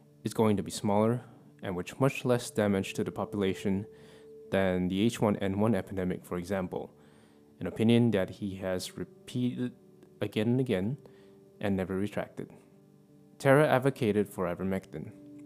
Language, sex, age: English, male, 20-39